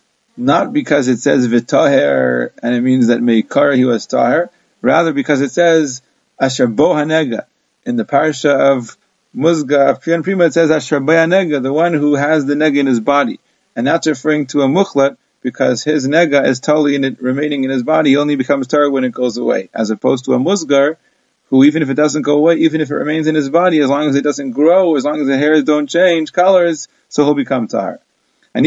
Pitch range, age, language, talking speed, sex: 135-160 Hz, 30-49, English, 205 wpm, male